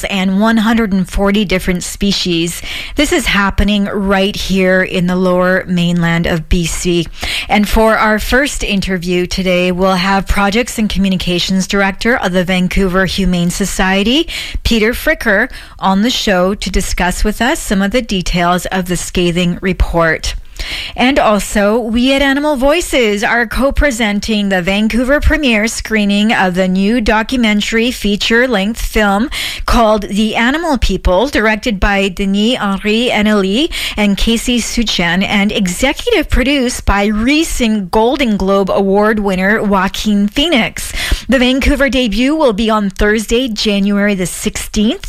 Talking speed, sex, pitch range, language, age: 130 wpm, female, 190-235 Hz, English, 40-59